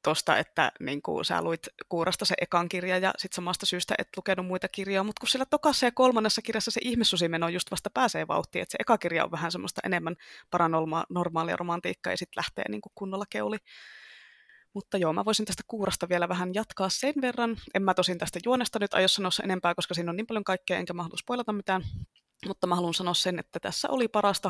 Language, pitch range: Finnish, 175-220 Hz